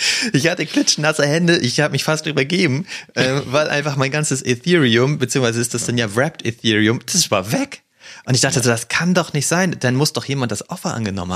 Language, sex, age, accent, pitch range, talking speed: German, male, 30-49, German, 110-140 Hz, 215 wpm